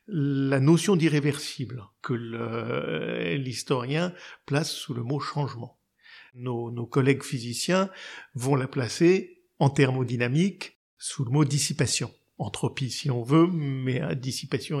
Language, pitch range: French, 135-170 Hz